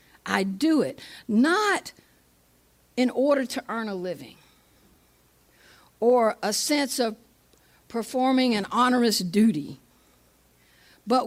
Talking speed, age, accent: 100 wpm, 60-79, American